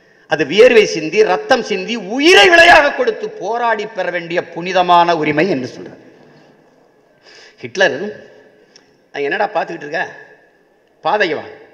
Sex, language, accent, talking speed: male, Tamil, native, 90 wpm